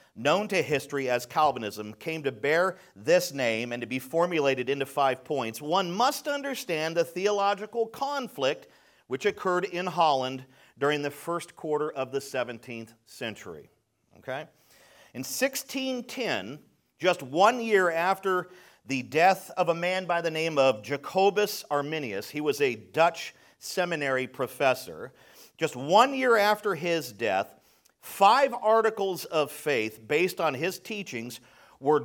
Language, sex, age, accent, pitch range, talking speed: English, male, 50-69, American, 135-190 Hz, 140 wpm